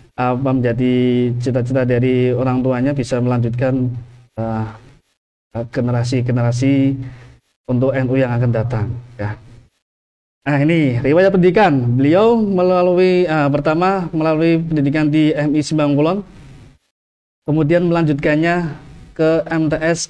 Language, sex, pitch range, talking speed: Indonesian, male, 130-170 Hz, 100 wpm